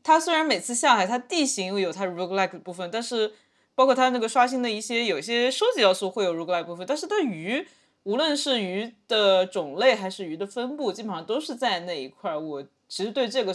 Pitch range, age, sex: 175-245 Hz, 20-39, female